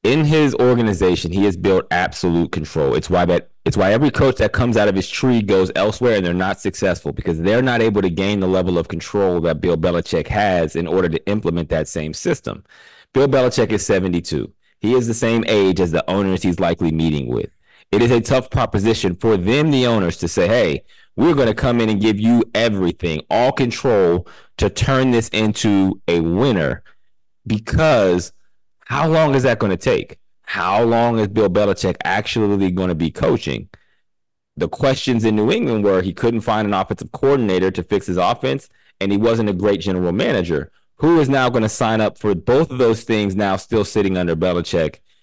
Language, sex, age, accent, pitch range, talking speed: English, male, 30-49, American, 90-115 Hz, 200 wpm